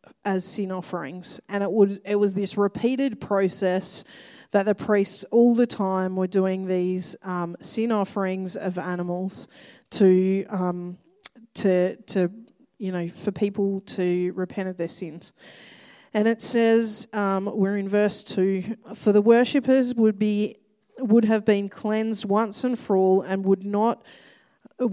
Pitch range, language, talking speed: 190-220 Hz, English, 150 wpm